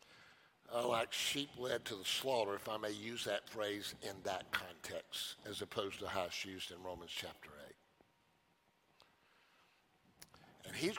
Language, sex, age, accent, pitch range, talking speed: English, male, 60-79, American, 110-150 Hz, 155 wpm